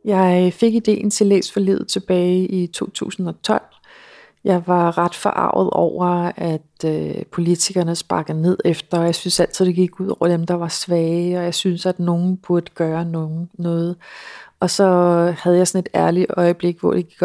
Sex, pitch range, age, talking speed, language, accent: female, 165-190 Hz, 30-49, 180 wpm, Danish, native